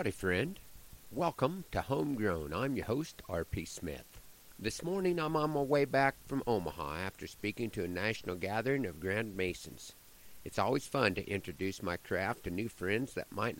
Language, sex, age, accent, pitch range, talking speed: English, male, 50-69, American, 95-125 Hz, 175 wpm